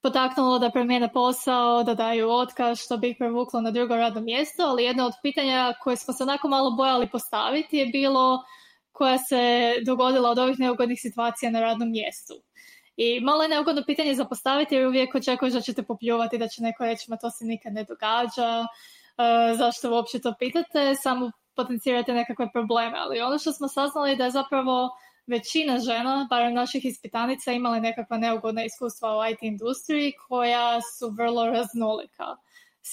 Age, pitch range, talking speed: 20-39, 230-260 Hz, 170 wpm